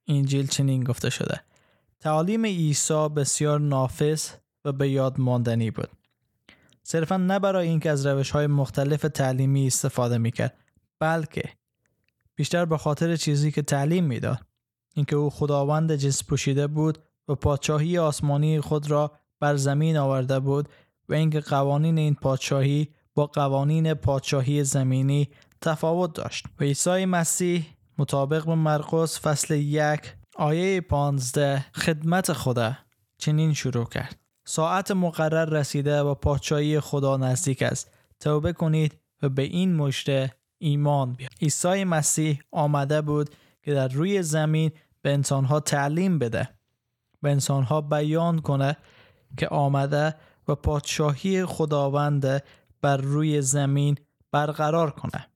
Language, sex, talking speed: Persian, male, 125 wpm